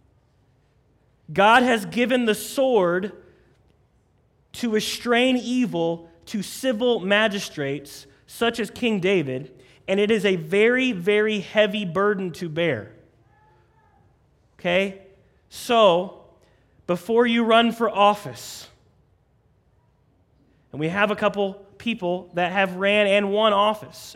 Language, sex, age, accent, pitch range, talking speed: English, male, 30-49, American, 155-210 Hz, 110 wpm